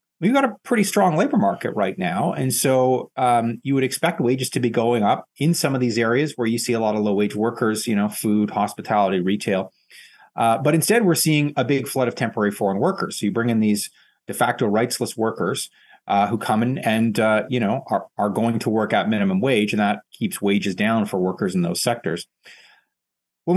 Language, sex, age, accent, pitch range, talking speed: English, male, 30-49, American, 110-170 Hz, 220 wpm